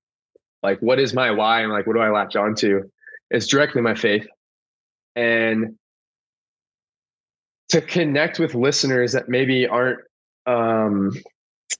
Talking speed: 130 wpm